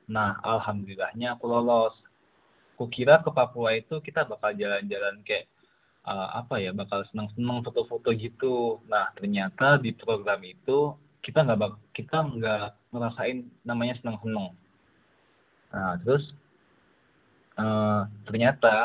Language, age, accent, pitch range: Indonesian, 20-39, native, 105-140 Hz